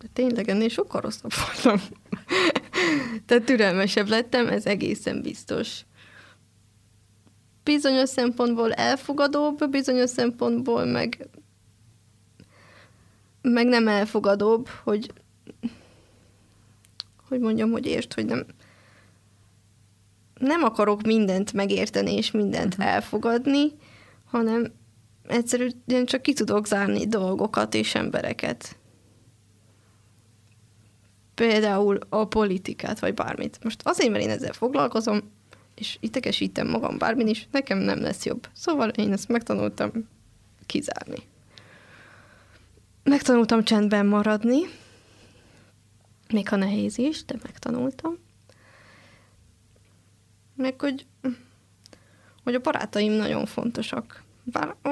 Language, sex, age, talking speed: Hungarian, female, 20-39, 95 wpm